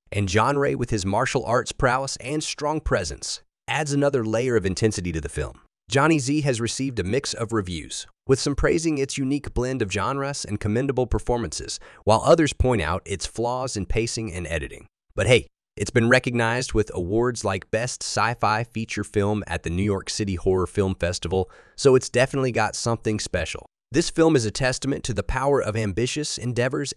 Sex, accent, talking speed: male, American, 190 wpm